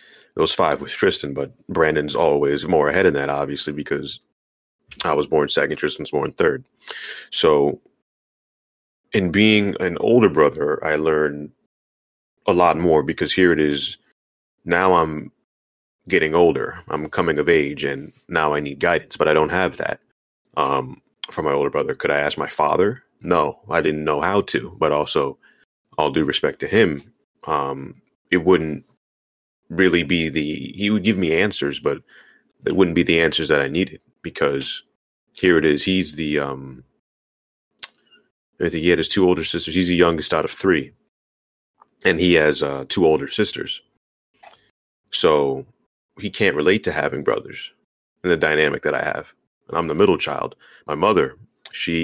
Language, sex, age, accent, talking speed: English, male, 30-49, American, 165 wpm